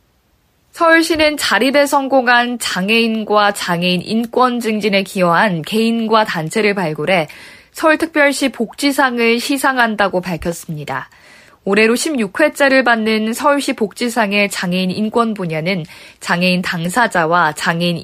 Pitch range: 190-255 Hz